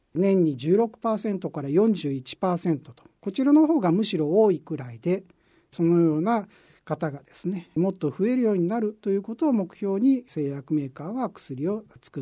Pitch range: 155-210 Hz